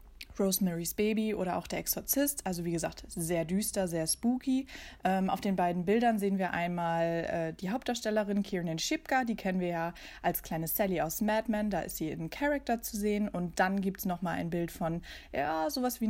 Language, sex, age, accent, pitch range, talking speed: German, female, 20-39, German, 180-230 Hz, 200 wpm